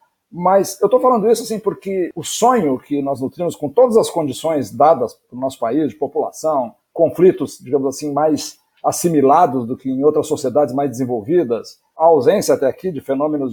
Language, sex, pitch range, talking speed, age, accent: Portuguese, male, 145-225 Hz, 180 wpm, 50-69, Brazilian